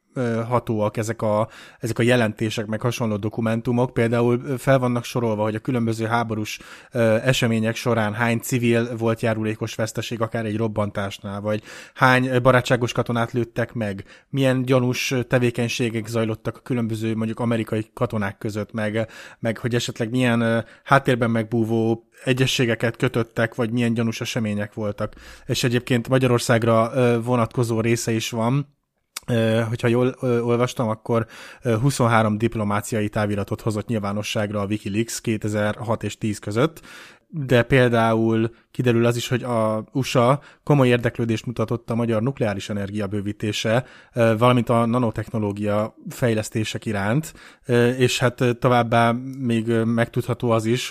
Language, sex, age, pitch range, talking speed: Hungarian, male, 20-39, 110-125 Hz, 125 wpm